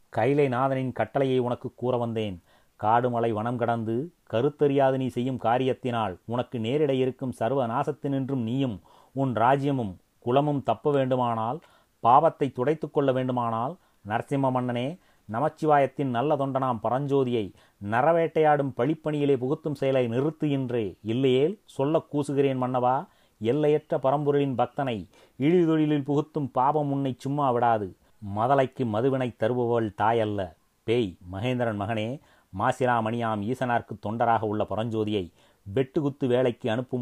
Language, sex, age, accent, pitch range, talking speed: Tamil, male, 30-49, native, 115-140 Hz, 110 wpm